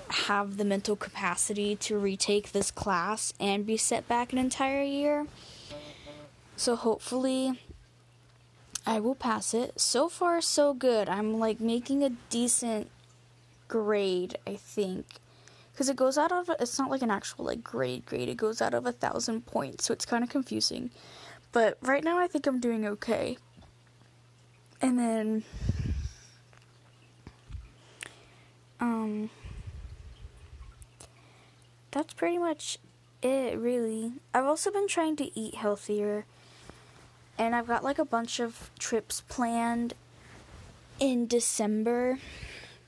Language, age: English, 10-29